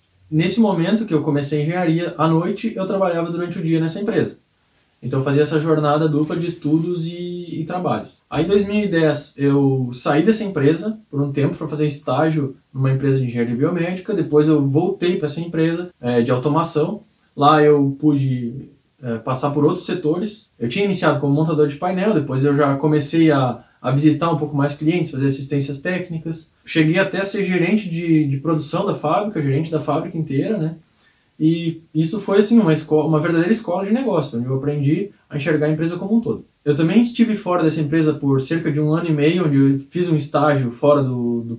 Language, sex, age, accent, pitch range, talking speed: Portuguese, male, 20-39, Brazilian, 140-170 Hz, 200 wpm